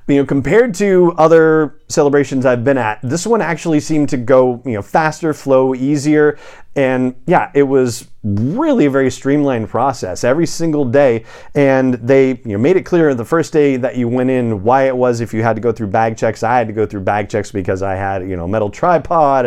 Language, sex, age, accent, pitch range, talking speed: English, male, 40-59, American, 110-145 Hz, 220 wpm